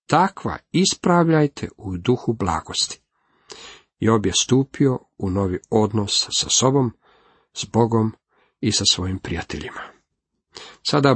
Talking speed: 110 wpm